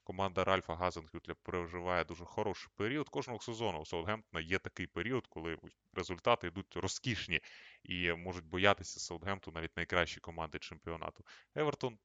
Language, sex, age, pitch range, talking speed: Ukrainian, male, 20-39, 85-105 Hz, 135 wpm